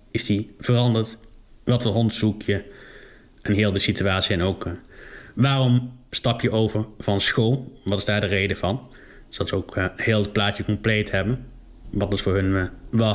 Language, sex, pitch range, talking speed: Dutch, male, 100-125 Hz, 190 wpm